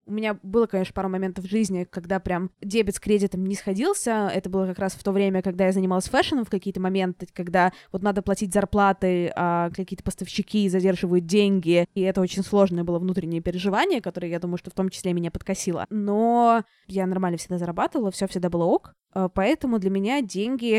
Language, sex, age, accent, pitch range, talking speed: Russian, female, 20-39, native, 185-225 Hz, 195 wpm